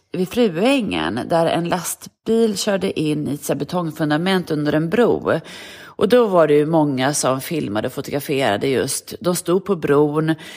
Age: 30-49